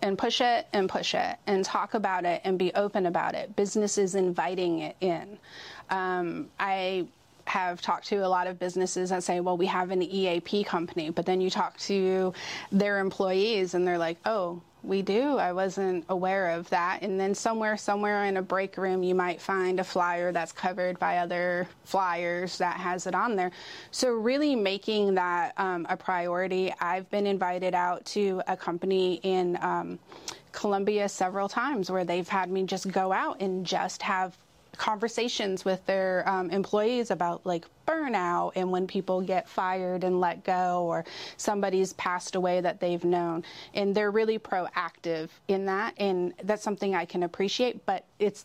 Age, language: 30-49, English